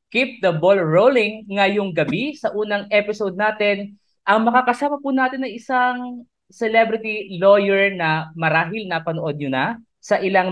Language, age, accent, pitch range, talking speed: English, 20-39, Filipino, 155-215 Hz, 145 wpm